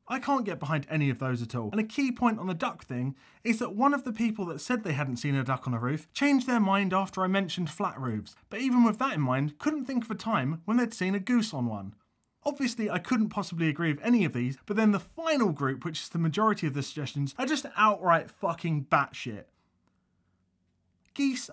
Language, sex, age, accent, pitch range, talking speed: English, male, 30-49, British, 130-210 Hz, 240 wpm